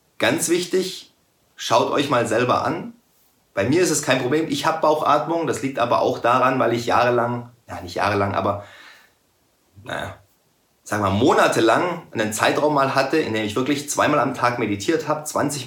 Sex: male